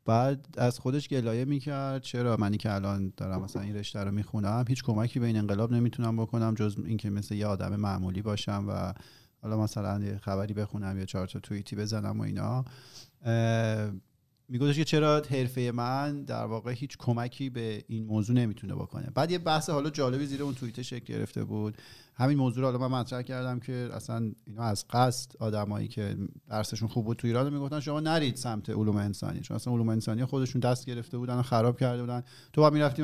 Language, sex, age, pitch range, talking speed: Persian, male, 40-59, 110-135 Hz, 190 wpm